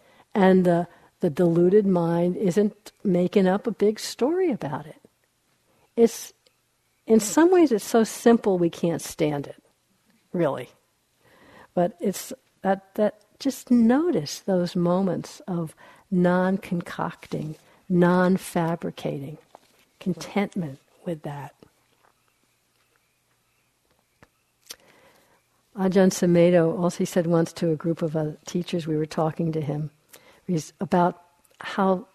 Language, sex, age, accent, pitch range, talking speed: English, female, 60-79, American, 165-200 Hz, 110 wpm